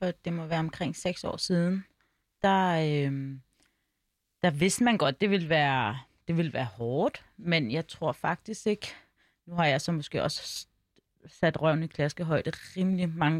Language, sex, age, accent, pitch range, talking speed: Danish, female, 30-49, native, 145-170 Hz, 170 wpm